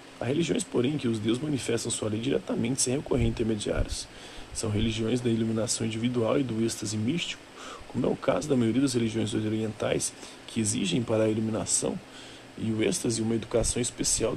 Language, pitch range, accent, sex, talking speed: Portuguese, 110-120 Hz, Brazilian, male, 180 wpm